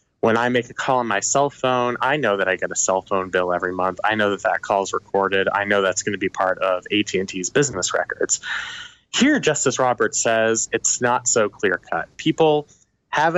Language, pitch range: English, 100-135 Hz